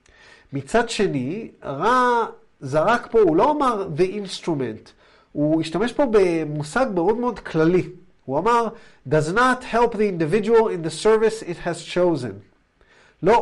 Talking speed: 140 wpm